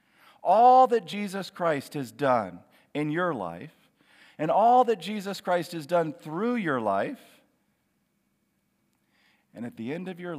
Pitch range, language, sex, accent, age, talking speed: 130-205 Hz, English, male, American, 50-69, 145 wpm